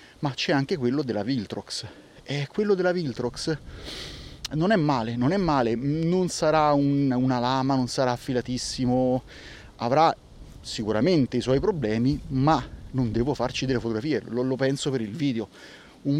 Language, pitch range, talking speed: Italian, 115-145 Hz, 155 wpm